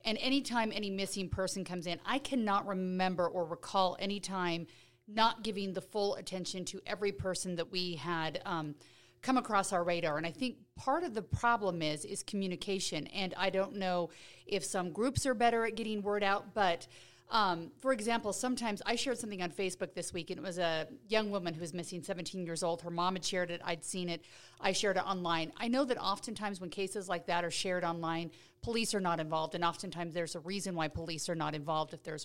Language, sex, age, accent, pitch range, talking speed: English, female, 40-59, American, 175-215 Hz, 215 wpm